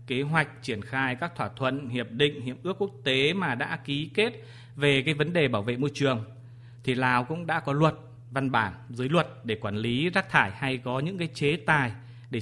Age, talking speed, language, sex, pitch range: 20-39, 225 wpm, Vietnamese, male, 120-150 Hz